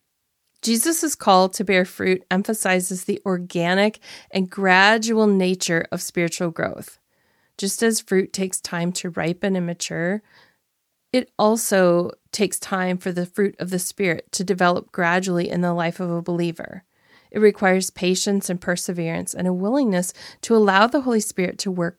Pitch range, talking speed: 180-235 Hz, 155 wpm